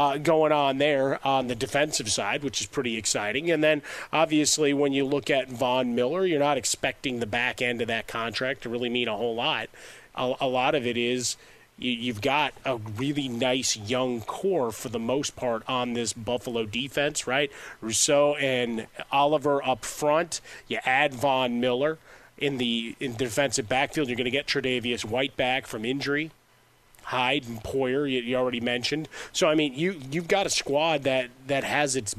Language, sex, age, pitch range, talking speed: English, male, 30-49, 125-145 Hz, 190 wpm